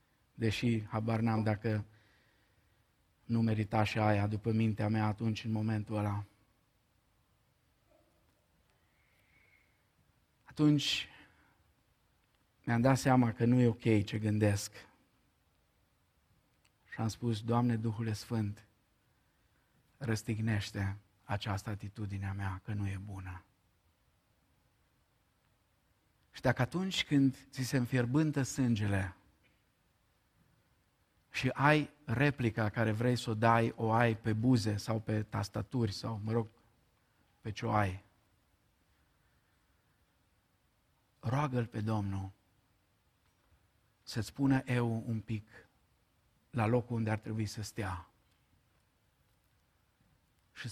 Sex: male